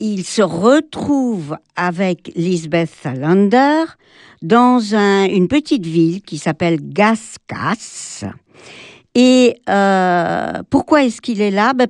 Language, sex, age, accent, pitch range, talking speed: French, male, 60-79, French, 185-250 Hz, 110 wpm